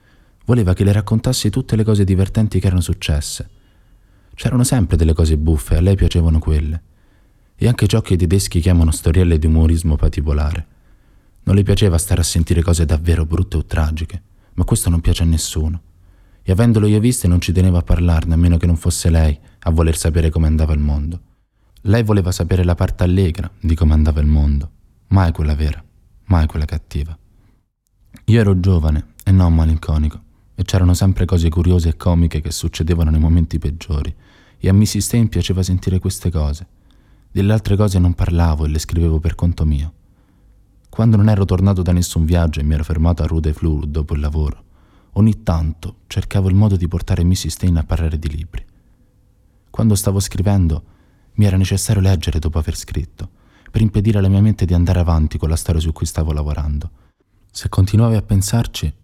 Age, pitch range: 20-39, 80-100 Hz